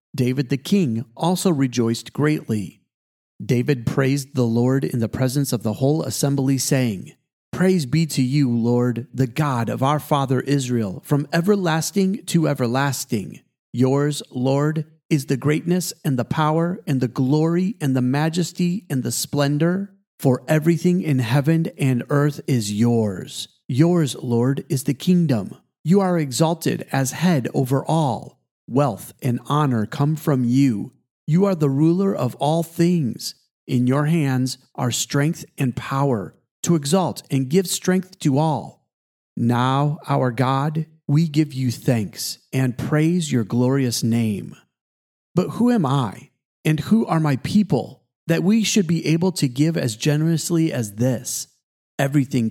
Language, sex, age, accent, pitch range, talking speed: English, male, 40-59, American, 130-160 Hz, 150 wpm